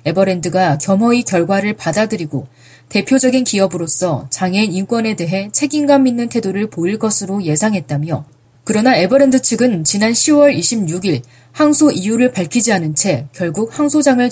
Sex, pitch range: female, 170-250 Hz